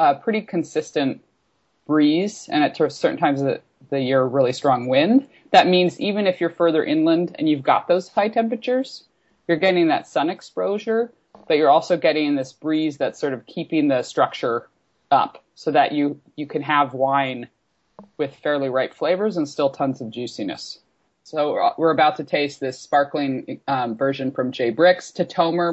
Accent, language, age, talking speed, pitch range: American, English, 20-39, 175 wpm, 130-165 Hz